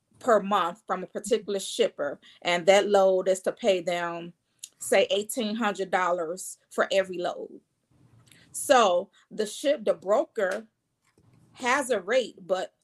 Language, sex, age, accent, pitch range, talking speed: English, female, 40-59, American, 185-220 Hz, 135 wpm